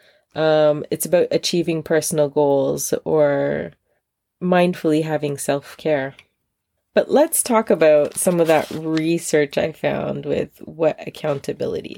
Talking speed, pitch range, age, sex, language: 115 wpm, 155-200 Hz, 20-39, female, English